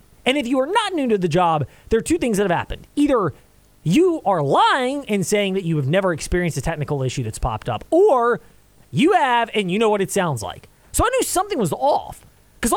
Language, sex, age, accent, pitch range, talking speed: English, male, 20-39, American, 145-215 Hz, 235 wpm